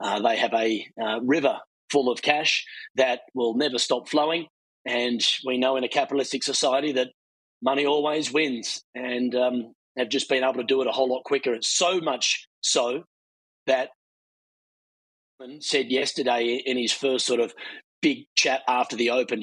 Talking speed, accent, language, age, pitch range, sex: 170 wpm, Australian, English, 30-49, 125-160 Hz, male